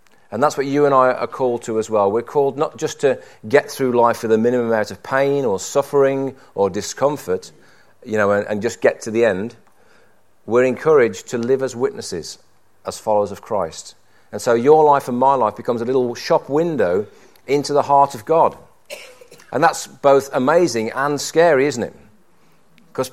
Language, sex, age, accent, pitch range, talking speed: English, male, 40-59, British, 115-155 Hz, 190 wpm